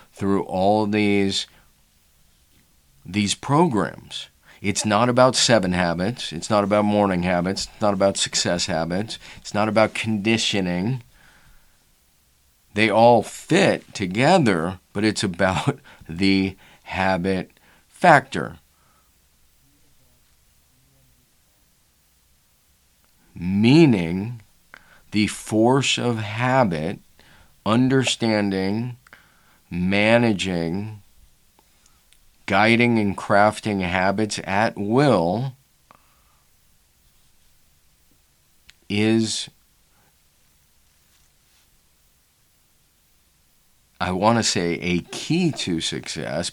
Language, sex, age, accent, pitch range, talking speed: English, male, 40-59, American, 80-110 Hz, 70 wpm